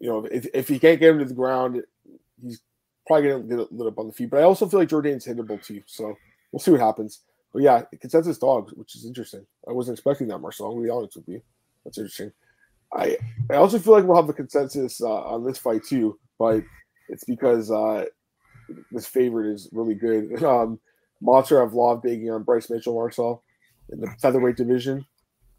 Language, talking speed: English, 210 wpm